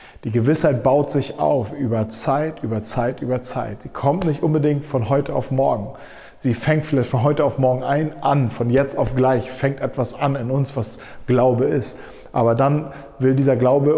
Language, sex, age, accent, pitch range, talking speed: German, male, 40-59, German, 120-145 Hz, 195 wpm